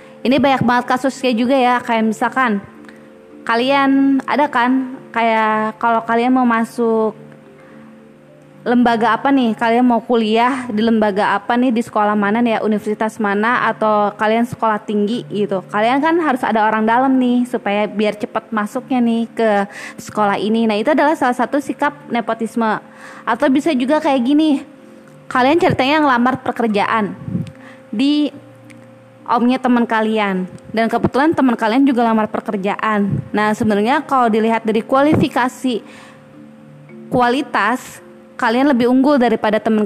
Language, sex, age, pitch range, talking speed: Indonesian, female, 20-39, 215-260 Hz, 140 wpm